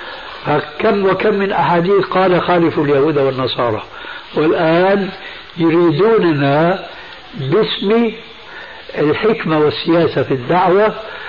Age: 60-79